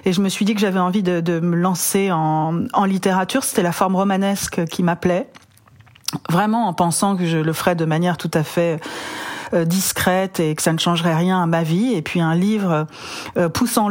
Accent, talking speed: French, 210 wpm